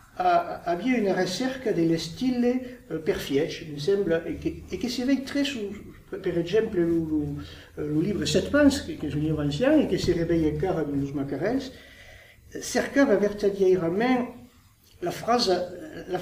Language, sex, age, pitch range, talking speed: English, male, 60-79, 150-235 Hz, 190 wpm